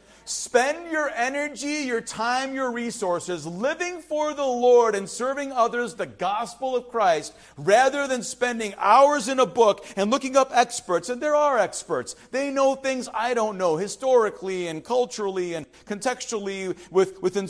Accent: American